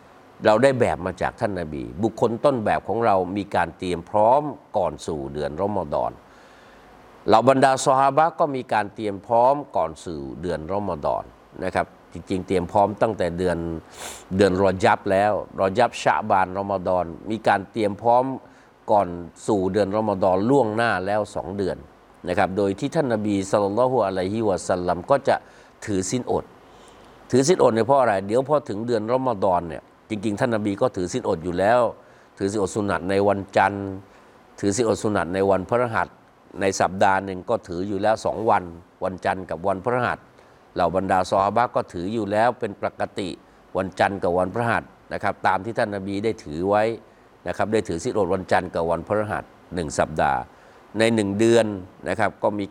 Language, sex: Thai, male